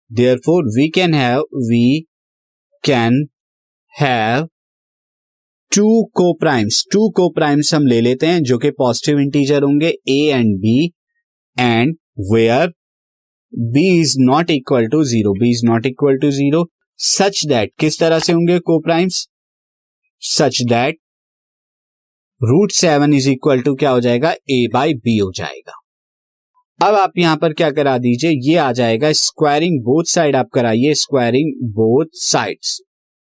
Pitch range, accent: 125-170 Hz, native